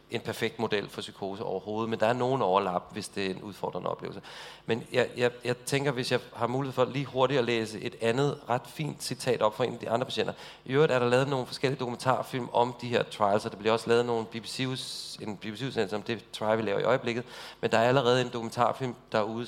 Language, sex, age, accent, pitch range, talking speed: English, male, 40-59, Danish, 110-125 Hz, 235 wpm